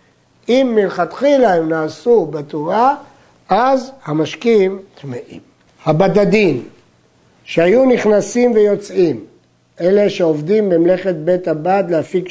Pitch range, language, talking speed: 160-220 Hz, Hebrew, 90 wpm